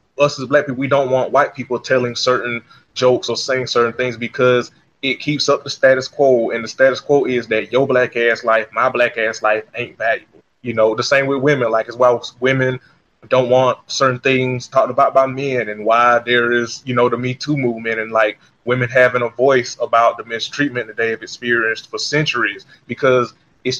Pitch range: 120-135 Hz